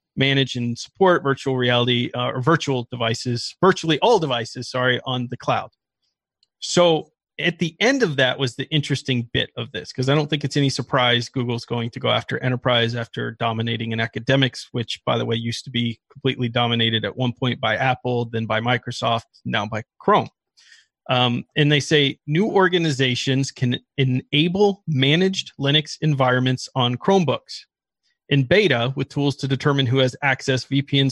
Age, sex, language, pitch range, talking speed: 30-49, male, English, 120-150 Hz, 170 wpm